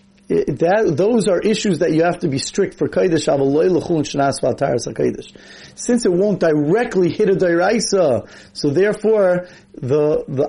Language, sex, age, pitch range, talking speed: English, male, 30-49, 135-175 Hz, 135 wpm